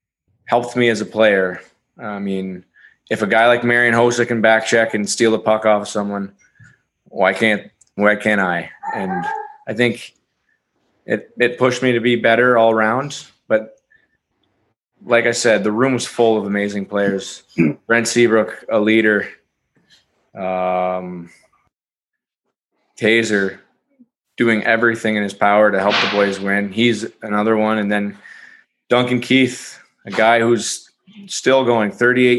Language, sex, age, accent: English, male, 20-39, American